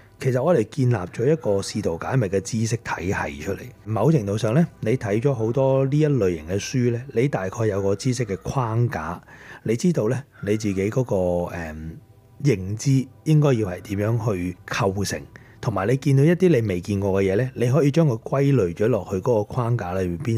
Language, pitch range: Chinese, 100-130 Hz